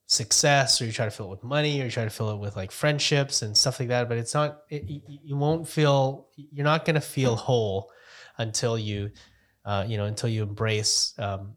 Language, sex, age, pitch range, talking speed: English, male, 30-49, 110-135 Hz, 230 wpm